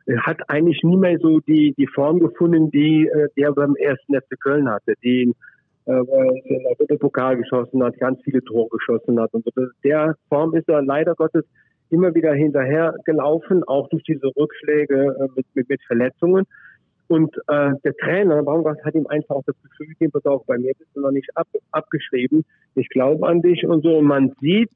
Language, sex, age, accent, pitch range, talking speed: German, male, 50-69, German, 140-170 Hz, 200 wpm